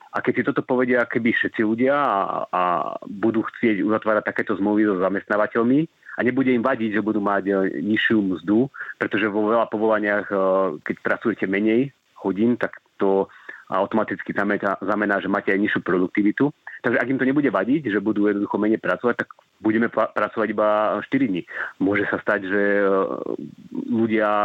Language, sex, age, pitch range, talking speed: Slovak, male, 30-49, 100-110 Hz, 160 wpm